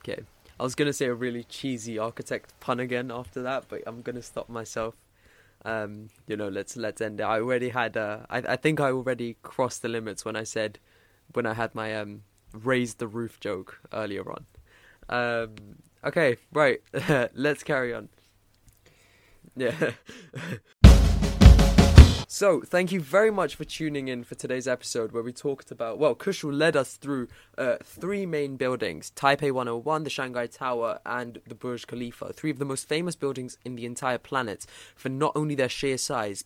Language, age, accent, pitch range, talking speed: English, 20-39, British, 110-135 Hz, 175 wpm